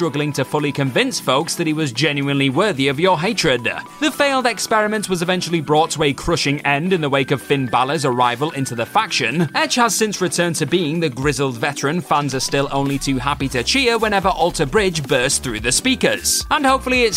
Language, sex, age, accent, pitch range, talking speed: English, male, 30-49, British, 140-215 Hz, 210 wpm